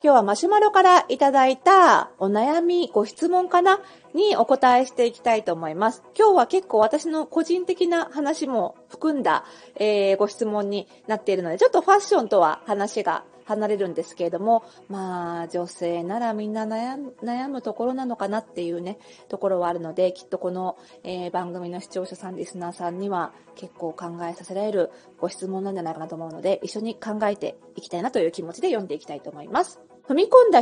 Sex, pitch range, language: female, 190-280 Hz, Japanese